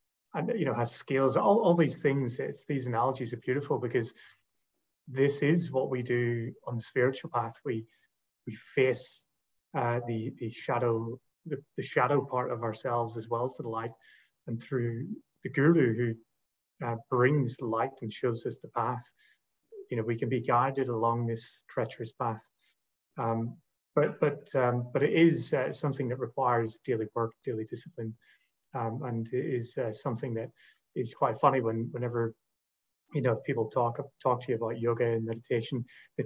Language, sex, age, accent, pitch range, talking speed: English, male, 30-49, British, 115-135 Hz, 175 wpm